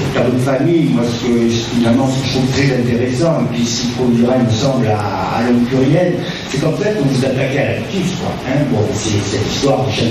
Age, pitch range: 40-59, 120-155 Hz